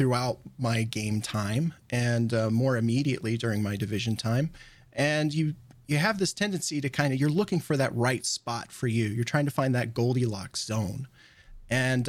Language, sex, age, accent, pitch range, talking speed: English, male, 30-49, American, 120-145 Hz, 185 wpm